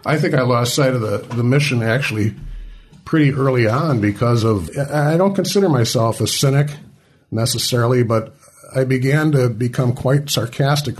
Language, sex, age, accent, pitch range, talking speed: English, male, 50-69, American, 100-130 Hz, 160 wpm